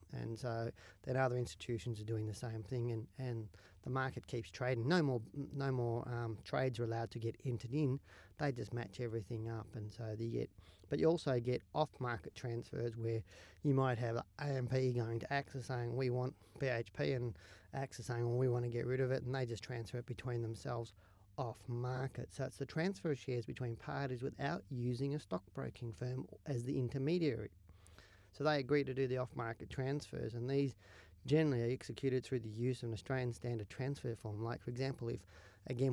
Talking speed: 195 wpm